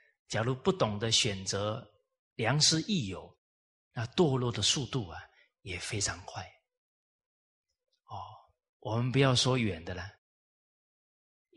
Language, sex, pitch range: Chinese, male, 105-160 Hz